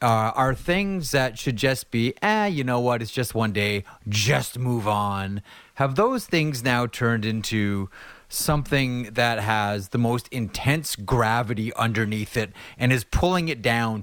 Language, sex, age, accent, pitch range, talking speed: English, male, 30-49, American, 105-130 Hz, 165 wpm